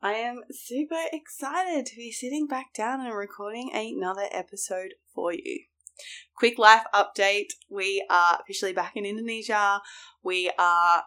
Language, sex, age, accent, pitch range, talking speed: English, female, 20-39, Australian, 175-225 Hz, 140 wpm